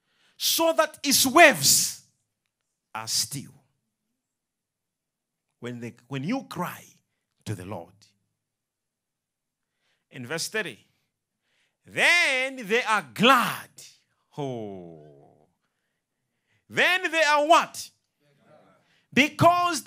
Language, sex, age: English, male, 50-69